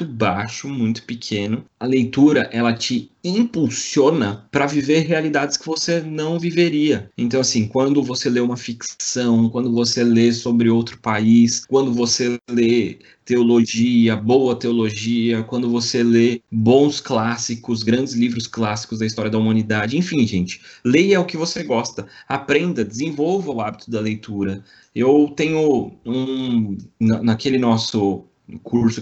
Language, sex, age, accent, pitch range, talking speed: Portuguese, male, 20-39, Brazilian, 110-145 Hz, 135 wpm